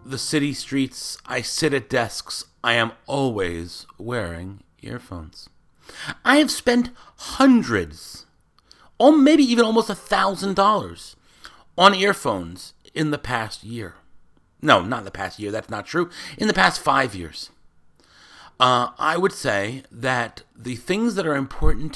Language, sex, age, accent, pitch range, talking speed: English, male, 40-59, American, 90-135 Hz, 145 wpm